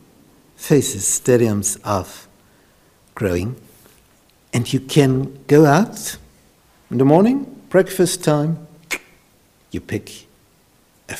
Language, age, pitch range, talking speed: English, 60-79, 115-160 Hz, 90 wpm